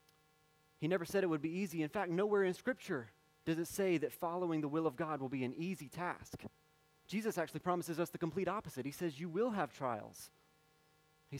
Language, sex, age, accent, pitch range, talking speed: English, male, 30-49, American, 150-180 Hz, 210 wpm